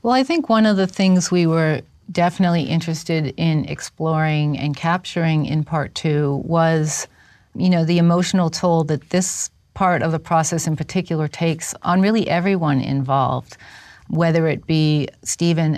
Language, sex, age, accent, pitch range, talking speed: English, female, 40-59, American, 145-165 Hz, 155 wpm